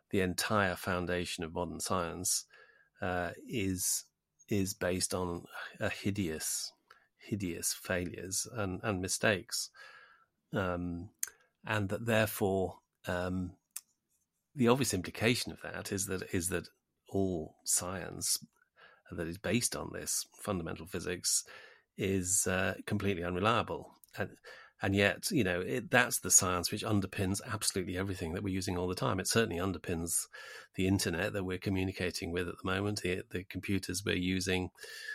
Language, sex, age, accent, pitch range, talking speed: English, male, 40-59, British, 90-105 Hz, 135 wpm